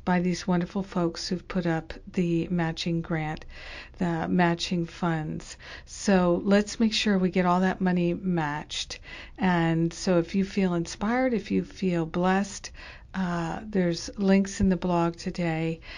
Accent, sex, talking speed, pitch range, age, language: American, female, 150 wpm, 165-190 Hz, 50-69, English